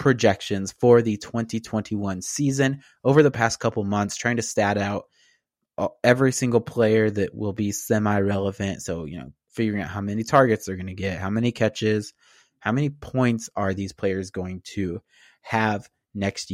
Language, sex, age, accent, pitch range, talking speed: English, male, 20-39, American, 100-135 Hz, 165 wpm